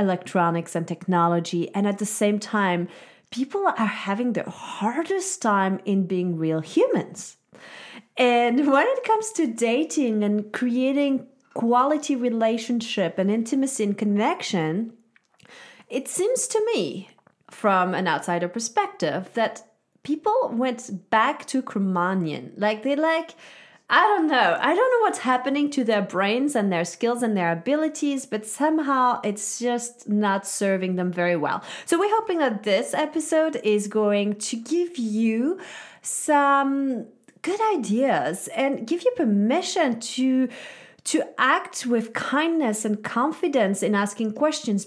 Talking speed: 140 wpm